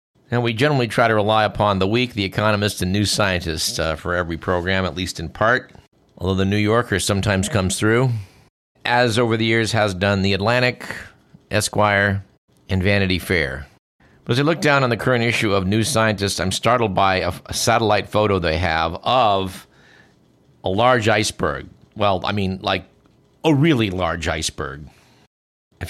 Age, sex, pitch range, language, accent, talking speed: 50-69, male, 95-120 Hz, English, American, 175 wpm